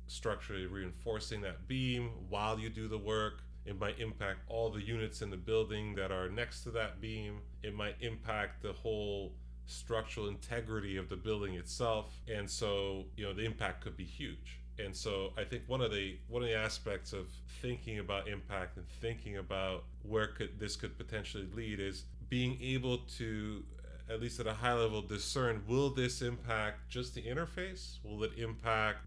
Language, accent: English, American